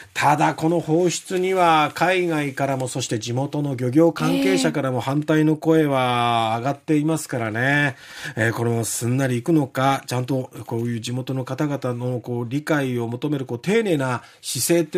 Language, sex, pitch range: Japanese, male, 130-180 Hz